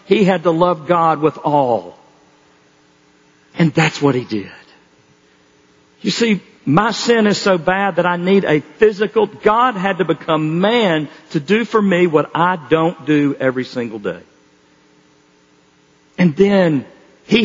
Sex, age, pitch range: male, 50-69, 155-215 Hz